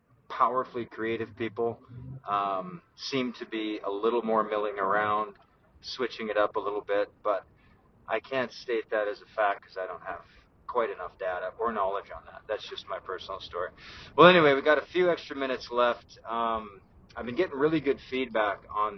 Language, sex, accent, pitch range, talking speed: English, male, American, 110-135 Hz, 185 wpm